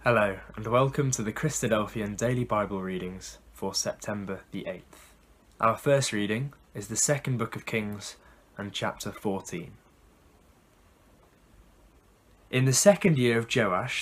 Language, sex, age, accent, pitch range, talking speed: English, male, 20-39, British, 100-140 Hz, 135 wpm